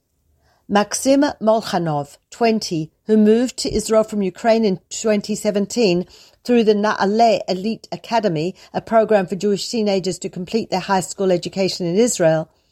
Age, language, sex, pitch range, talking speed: 50-69, Hebrew, female, 180-220 Hz, 135 wpm